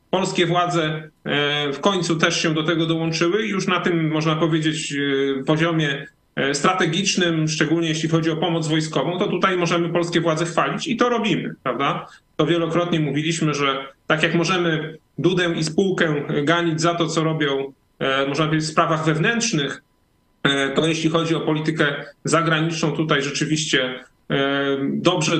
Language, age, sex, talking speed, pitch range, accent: Polish, 30-49, male, 145 wpm, 150-170 Hz, native